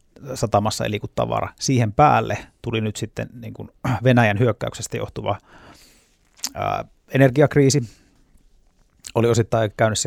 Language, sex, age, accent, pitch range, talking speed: Finnish, male, 30-49, native, 105-120 Hz, 100 wpm